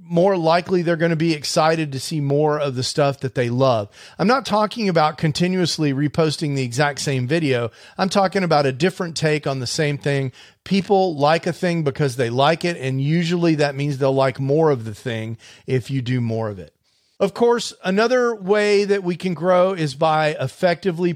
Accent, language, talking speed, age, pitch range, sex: American, English, 200 wpm, 40-59, 140-180 Hz, male